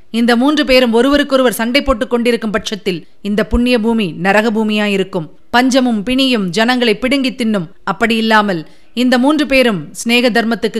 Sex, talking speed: female, 135 wpm